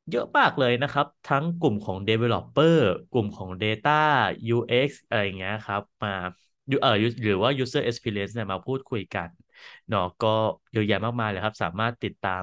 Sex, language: male, Thai